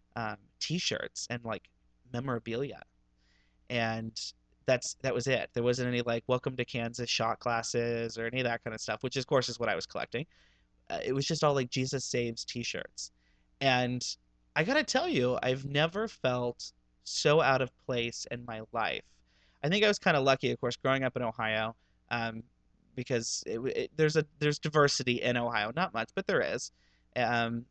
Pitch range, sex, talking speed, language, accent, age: 110-125 Hz, male, 185 wpm, English, American, 30-49